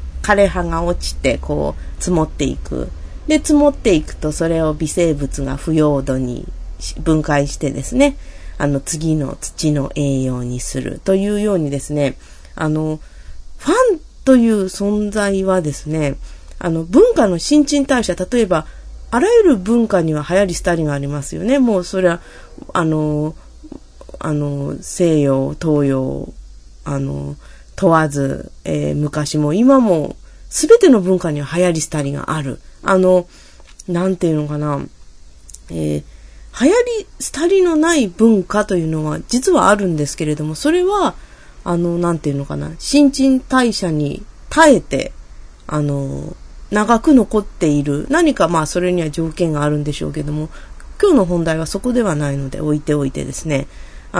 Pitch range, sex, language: 145-210 Hz, female, Japanese